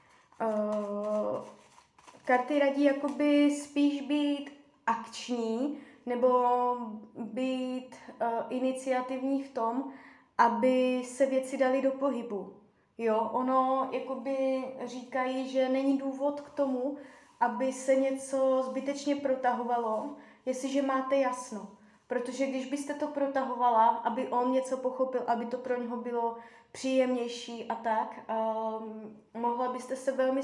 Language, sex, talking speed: Czech, female, 110 wpm